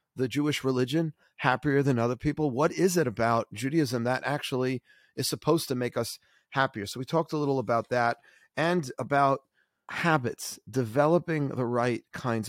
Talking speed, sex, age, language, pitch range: 165 wpm, male, 40-59, English, 115-145 Hz